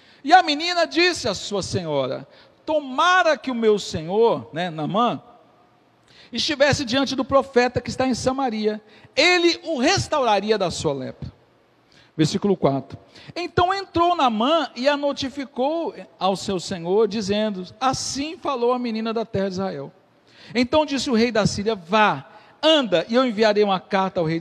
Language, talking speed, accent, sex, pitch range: Portuguese, 155 wpm, Brazilian, male, 185-270 Hz